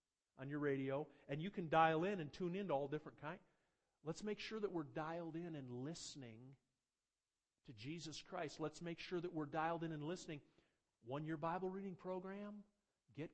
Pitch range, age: 150-205 Hz, 50-69